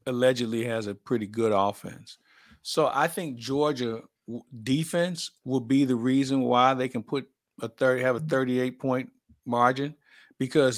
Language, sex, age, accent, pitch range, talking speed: English, male, 50-69, American, 120-145 Hz, 150 wpm